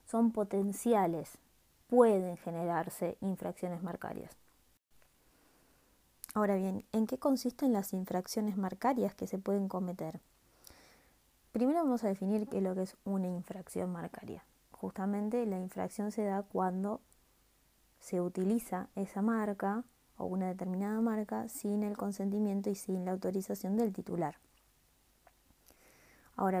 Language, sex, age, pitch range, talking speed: Spanish, female, 20-39, 185-230 Hz, 120 wpm